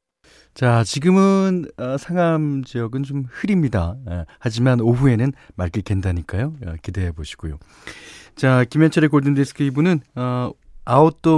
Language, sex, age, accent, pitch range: Korean, male, 40-59, native, 100-155 Hz